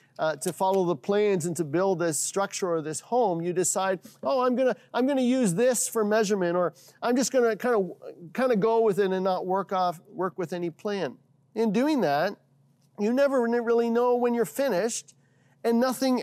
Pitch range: 140-220 Hz